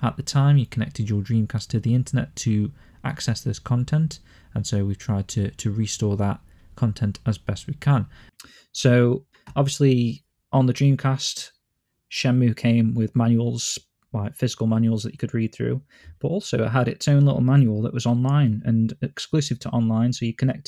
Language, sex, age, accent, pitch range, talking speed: English, male, 20-39, British, 110-125 Hz, 180 wpm